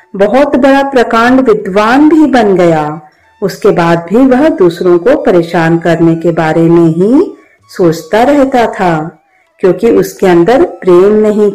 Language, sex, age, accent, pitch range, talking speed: Hindi, female, 50-69, native, 180-275 Hz, 145 wpm